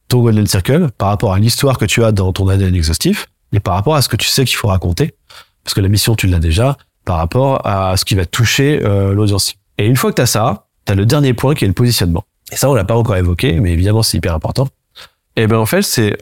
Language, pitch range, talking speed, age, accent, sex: French, 100-130 Hz, 275 wpm, 30-49, French, male